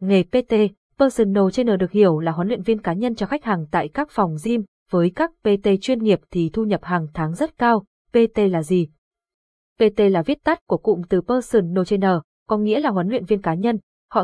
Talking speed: 220 wpm